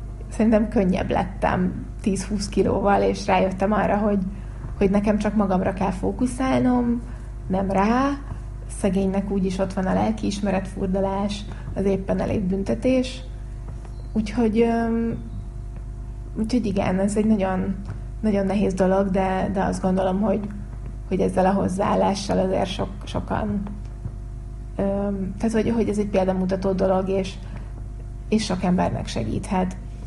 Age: 30-49